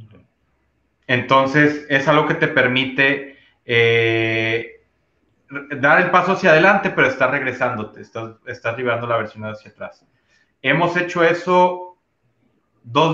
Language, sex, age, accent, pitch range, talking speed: Spanish, male, 30-49, Mexican, 115-145 Hz, 120 wpm